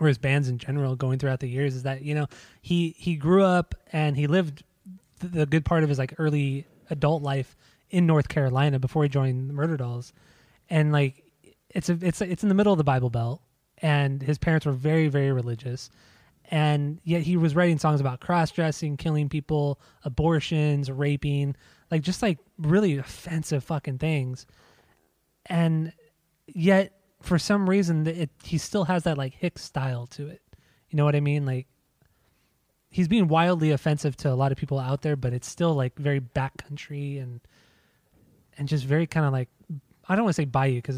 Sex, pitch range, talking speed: male, 135-165 Hz, 195 wpm